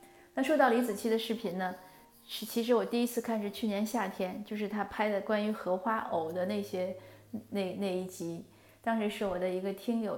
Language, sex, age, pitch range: Chinese, female, 30-49, 185-215 Hz